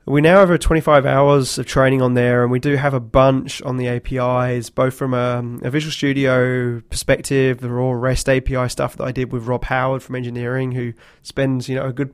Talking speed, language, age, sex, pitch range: 225 wpm, English, 20-39, male, 125-140 Hz